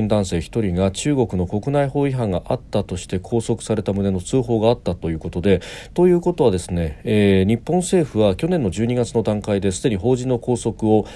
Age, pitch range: 40-59, 90-115 Hz